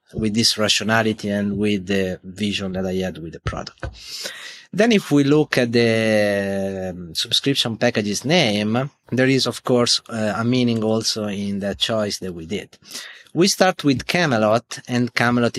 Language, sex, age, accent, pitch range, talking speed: English, male, 30-49, Italian, 105-135 Hz, 160 wpm